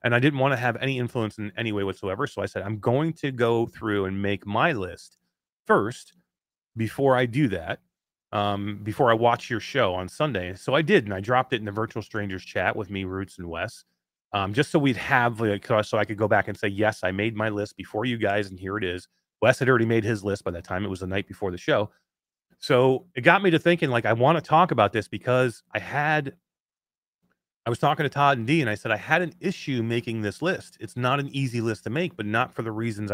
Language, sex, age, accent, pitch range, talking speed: English, male, 30-49, American, 100-130 Hz, 250 wpm